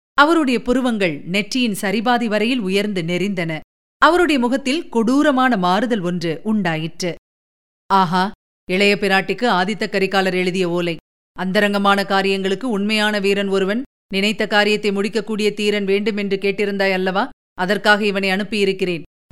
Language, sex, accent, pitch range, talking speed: Tamil, female, native, 185-240 Hz, 110 wpm